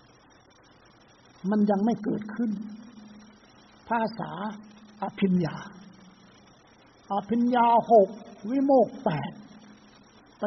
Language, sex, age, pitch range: Thai, male, 60-79, 200-235 Hz